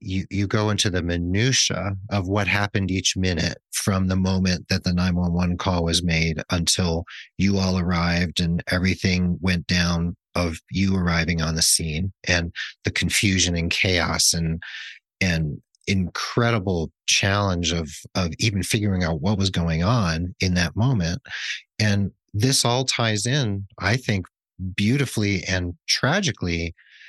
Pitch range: 90-105 Hz